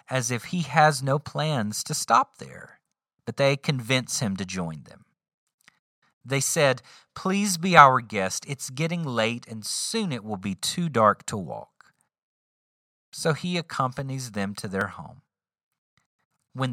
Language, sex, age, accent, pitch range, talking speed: English, male, 40-59, American, 115-165 Hz, 150 wpm